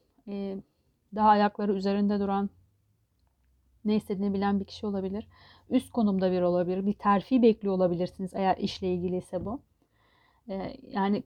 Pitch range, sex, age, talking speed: 190-240 Hz, female, 40-59, 125 wpm